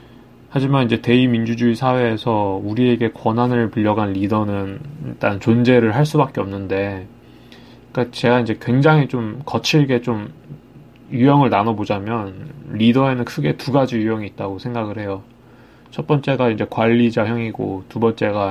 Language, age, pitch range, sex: Korean, 20-39, 105-120 Hz, male